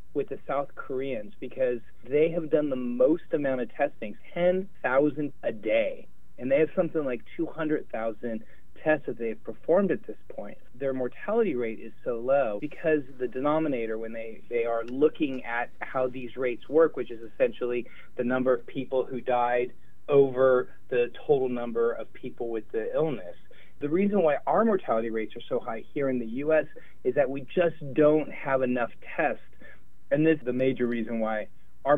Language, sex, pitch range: English, male, 115-150 Hz